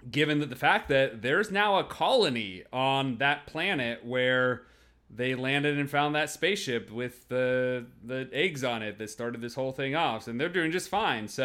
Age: 30-49